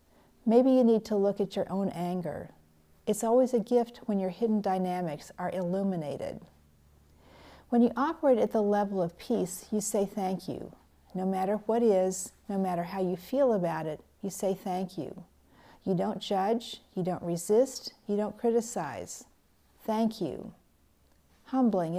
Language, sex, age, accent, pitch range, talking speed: English, female, 40-59, American, 185-215 Hz, 160 wpm